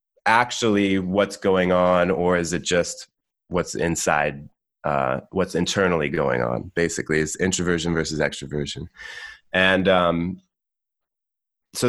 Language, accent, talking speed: English, American, 115 wpm